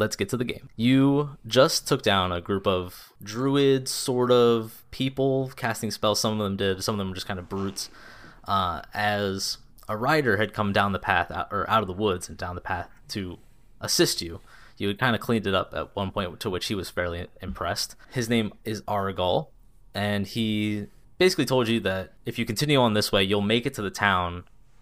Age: 20-39